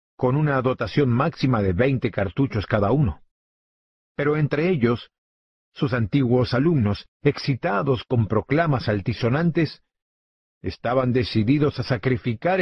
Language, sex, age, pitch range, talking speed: Spanish, male, 50-69, 105-145 Hz, 110 wpm